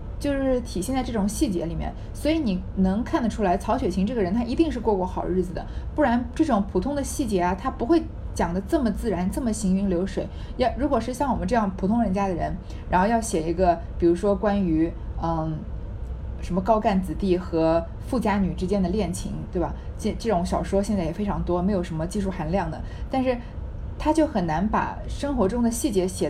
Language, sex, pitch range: Chinese, female, 185-235 Hz